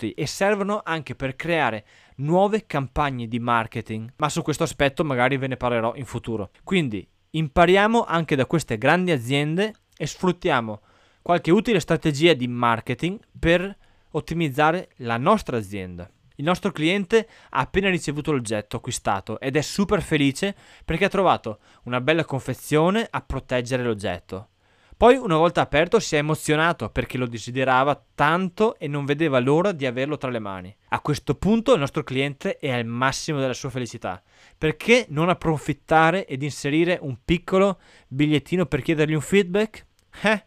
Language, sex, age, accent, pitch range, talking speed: Italian, male, 20-39, native, 125-175 Hz, 155 wpm